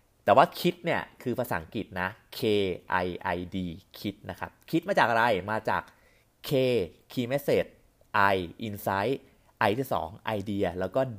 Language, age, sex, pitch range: Thai, 30-49, male, 90-125 Hz